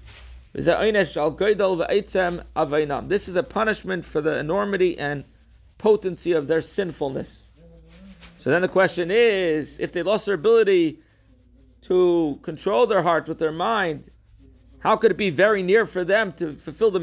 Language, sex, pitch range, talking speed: English, male, 145-190 Hz, 140 wpm